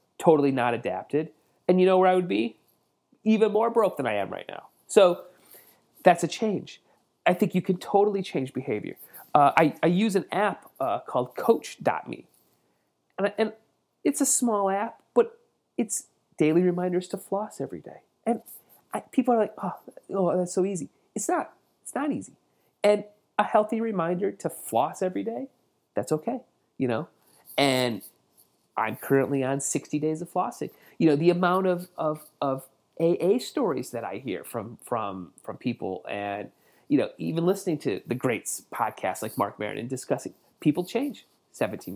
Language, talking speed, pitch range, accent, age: English, 170 wpm, 135-210 Hz, American, 30-49